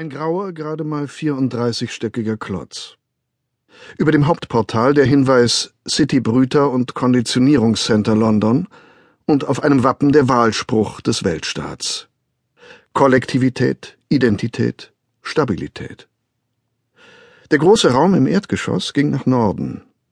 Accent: German